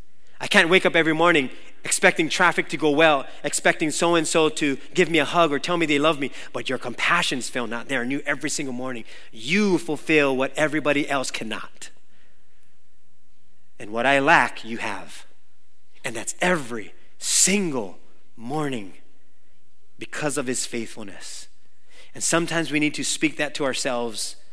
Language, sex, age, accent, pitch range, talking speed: English, male, 30-49, American, 105-180 Hz, 165 wpm